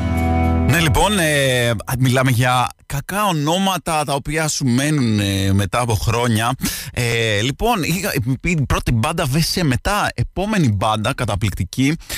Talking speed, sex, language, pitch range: 125 wpm, male, Greek, 120-180 Hz